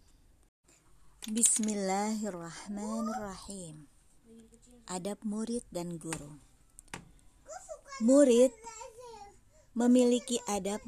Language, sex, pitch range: Indonesian, male, 170-235 Hz